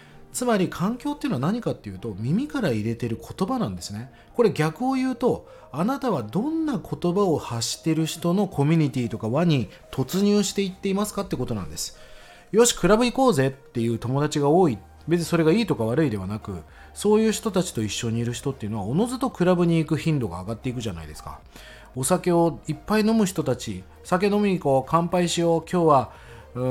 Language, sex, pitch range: Japanese, male, 115-190 Hz